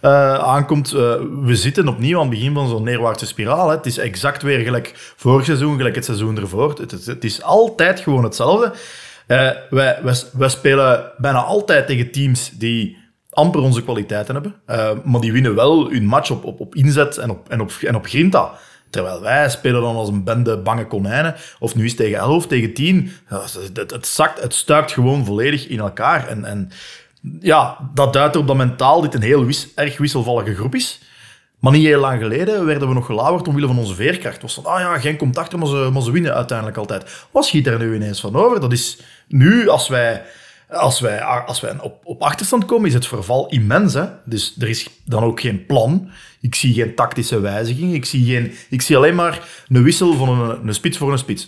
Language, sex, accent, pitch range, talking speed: Dutch, male, Dutch, 115-150 Hz, 215 wpm